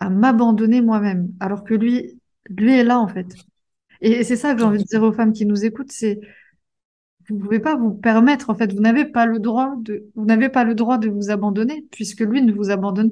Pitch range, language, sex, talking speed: 200-230 Hz, French, female, 240 wpm